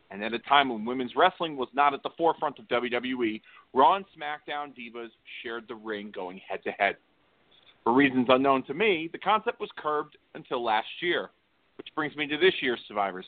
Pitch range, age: 125-165 Hz, 40-59